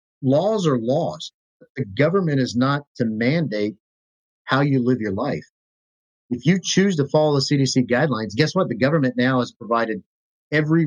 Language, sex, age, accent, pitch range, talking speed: English, male, 40-59, American, 110-140 Hz, 165 wpm